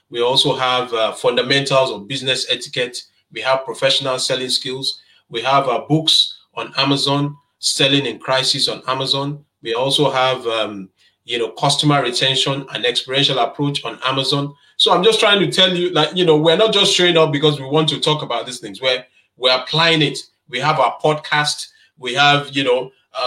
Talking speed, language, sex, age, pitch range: 185 wpm, English, male, 30-49, 130-155 Hz